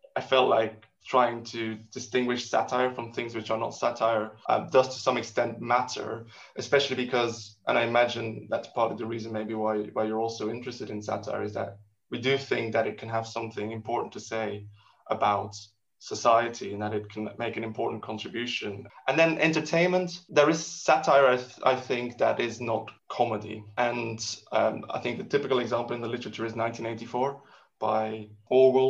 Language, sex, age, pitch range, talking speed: English, male, 20-39, 110-130 Hz, 185 wpm